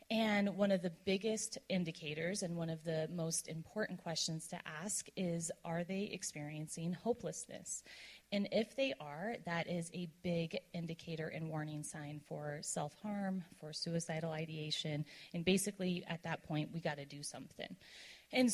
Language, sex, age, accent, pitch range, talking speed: English, female, 30-49, American, 165-205 Hz, 150 wpm